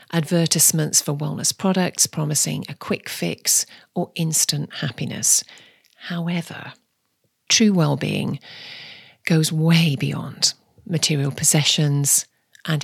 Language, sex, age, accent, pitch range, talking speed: English, female, 40-59, British, 155-185 Hz, 100 wpm